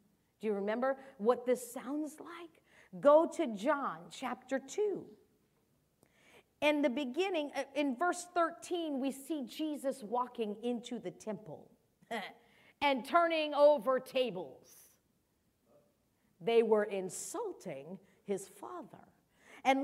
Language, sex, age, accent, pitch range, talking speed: English, female, 50-69, American, 200-280 Hz, 105 wpm